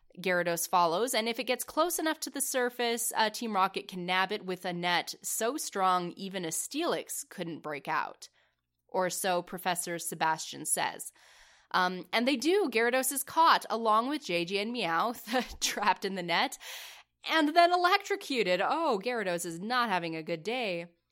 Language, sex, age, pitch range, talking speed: English, female, 20-39, 180-235 Hz, 170 wpm